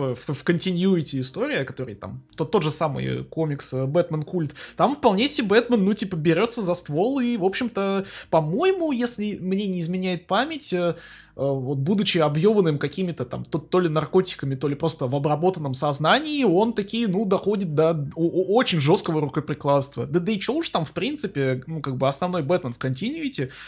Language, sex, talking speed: Russian, male, 175 wpm